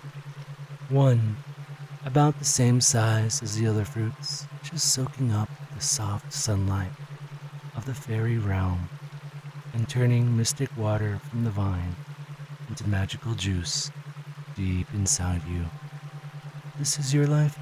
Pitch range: 105-150 Hz